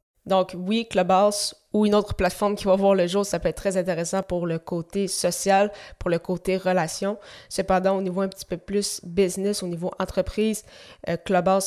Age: 20-39